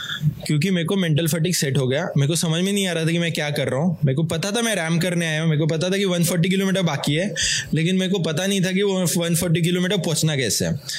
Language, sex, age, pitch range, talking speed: English, male, 20-39, 150-180 Hz, 220 wpm